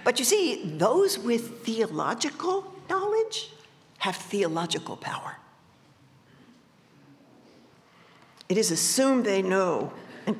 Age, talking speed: 50-69, 90 wpm